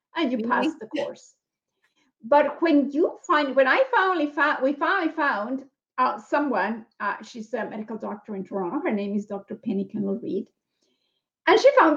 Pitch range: 205-295 Hz